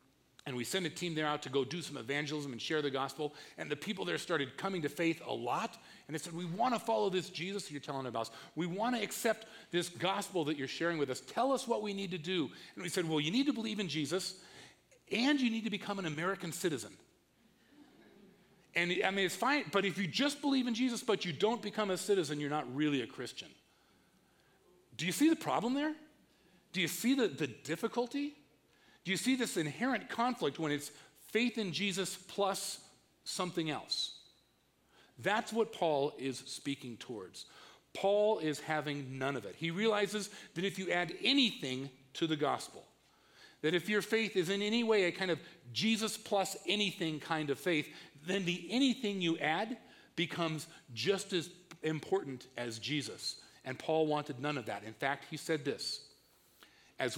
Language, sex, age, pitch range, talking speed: English, male, 40-59, 150-215 Hz, 195 wpm